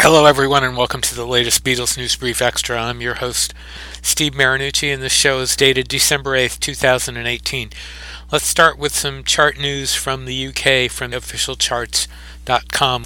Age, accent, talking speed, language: 40-59, American, 160 wpm, English